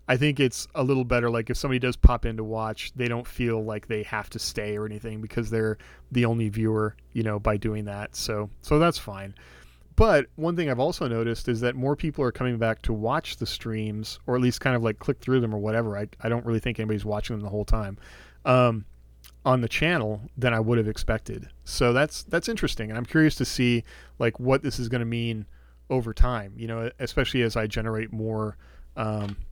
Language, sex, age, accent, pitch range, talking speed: English, male, 30-49, American, 105-125 Hz, 230 wpm